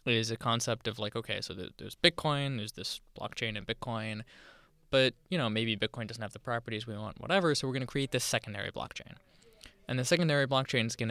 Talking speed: 215 wpm